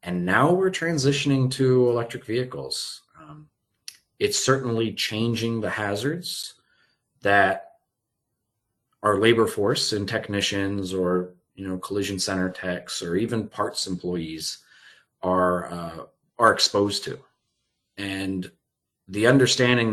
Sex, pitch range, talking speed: male, 90-120 Hz, 110 wpm